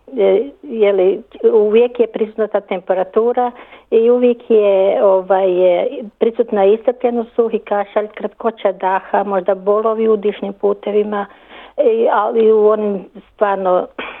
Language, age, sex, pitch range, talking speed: Croatian, 50-69, female, 190-220 Hz, 120 wpm